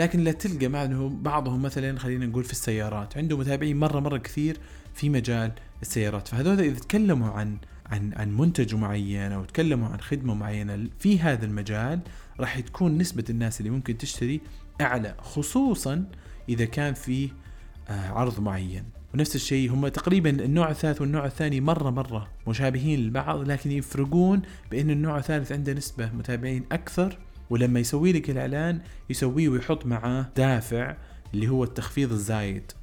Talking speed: 150 wpm